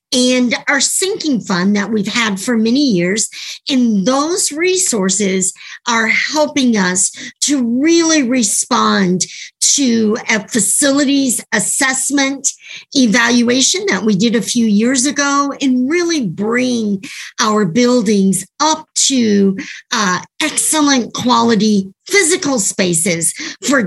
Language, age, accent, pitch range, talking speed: English, 50-69, American, 205-275 Hz, 110 wpm